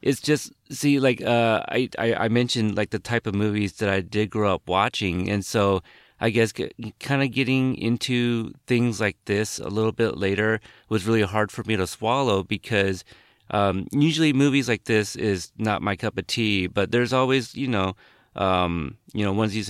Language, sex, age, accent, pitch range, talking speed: English, male, 30-49, American, 100-125 Hz, 190 wpm